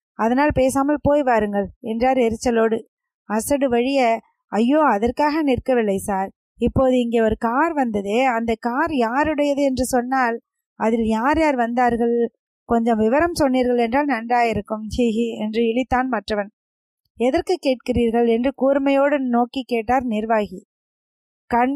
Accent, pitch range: native, 230-275 Hz